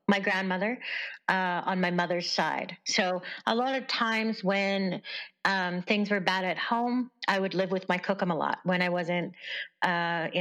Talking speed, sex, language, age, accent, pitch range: 185 wpm, female, English, 40-59, American, 175-205 Hz